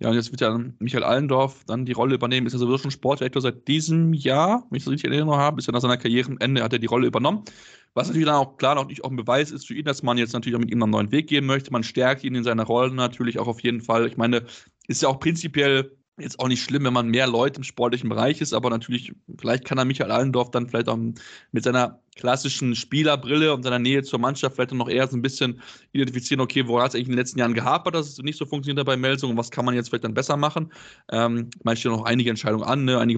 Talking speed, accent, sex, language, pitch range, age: 270 wpm, German, male, German, 120-140 Hz, 20-39